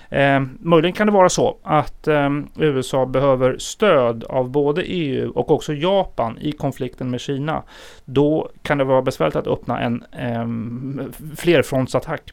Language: Swedish